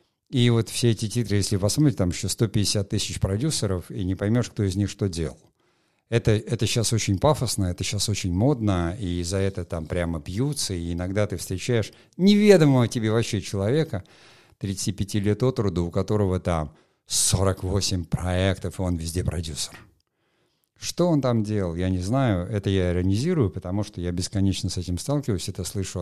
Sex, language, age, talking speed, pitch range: male, Russian, 50-69, 175 wpm, 90-115 Hz